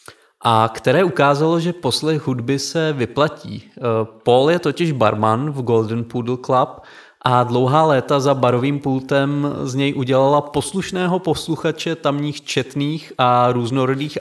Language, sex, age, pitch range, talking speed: Czech, male, 30-49, 120-145 Hz, 130 wpm